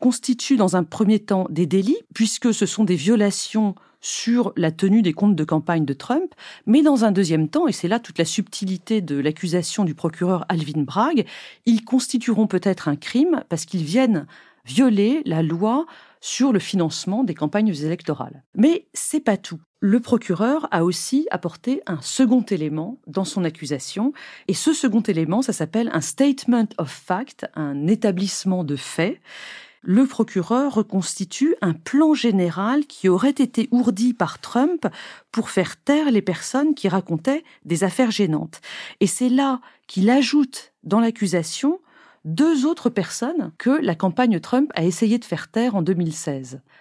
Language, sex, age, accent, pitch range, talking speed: French, female, 40-59, French, 175-250 Hz, 165 wpm